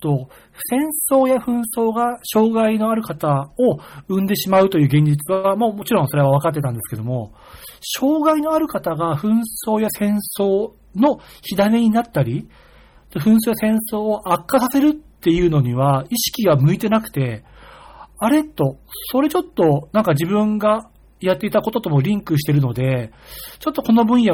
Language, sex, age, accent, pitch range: Japanese, male, 40-59, native, 150-235 Hz